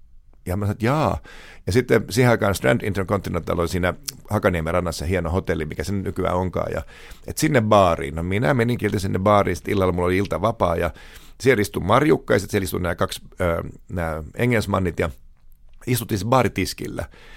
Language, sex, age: Finnish, male, 50-69